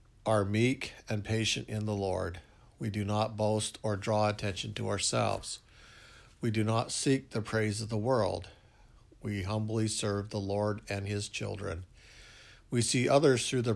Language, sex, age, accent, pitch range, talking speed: English, male, 60-79, American, 100-115 Hz, 165 wpm